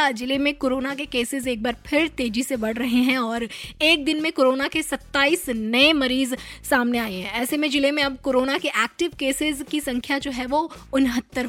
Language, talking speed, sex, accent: Hindi, 210 wpm, female, native